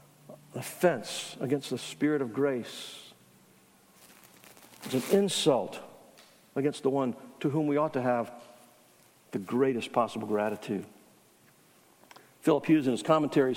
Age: 60-79